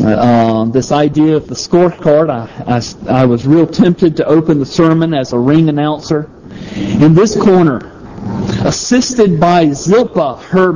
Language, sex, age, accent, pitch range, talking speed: English, male, 50-69, American, 130-175 Hz, 150 wpm